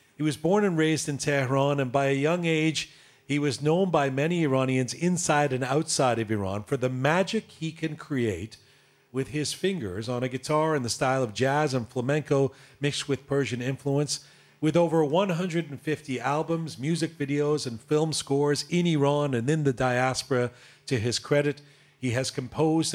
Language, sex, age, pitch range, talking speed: English, male, 40-59, 135-160 Hz, 175 wpm